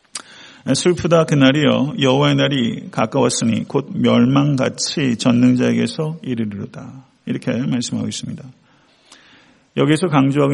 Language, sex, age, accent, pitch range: Korean, male, 40-59, native, 120-145 Hz